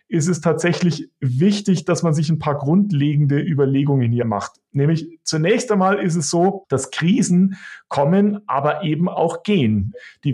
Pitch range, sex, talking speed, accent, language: 140-185 Hz, male, 155 wpm, German, German